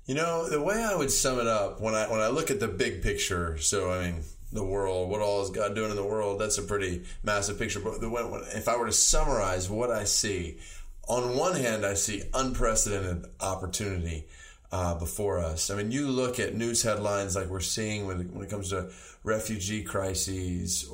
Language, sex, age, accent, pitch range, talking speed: English, male, 30-49, American, 90-110 Hz, 210 wpm